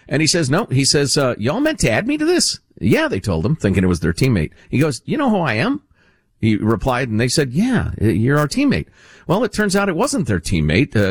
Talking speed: 260 wpm